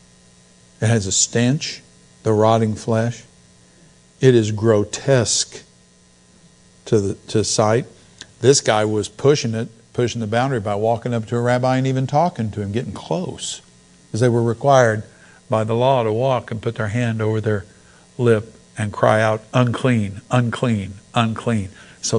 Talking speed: 155 wpm